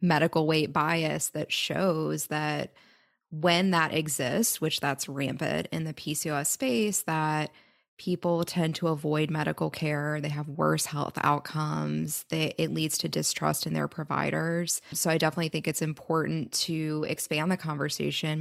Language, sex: English, female